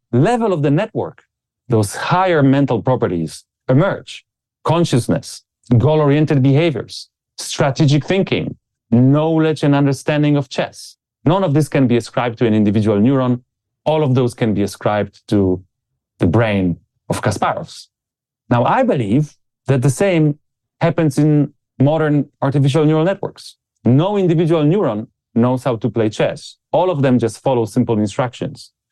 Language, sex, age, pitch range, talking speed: English, male, 30-49, 110-145 Hz, 140 wpm